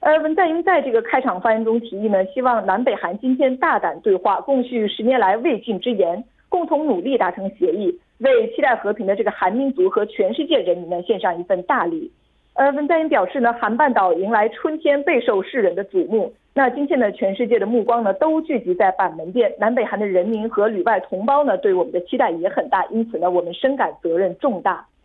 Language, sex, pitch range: Korean, female, 195-295 Hz